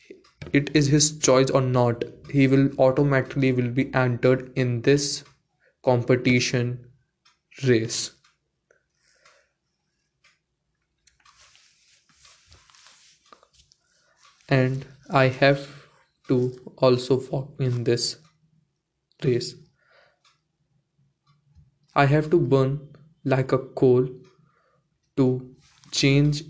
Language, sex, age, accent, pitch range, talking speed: English, male, 20-39, Indian, 125-150 Hz, 75 wpm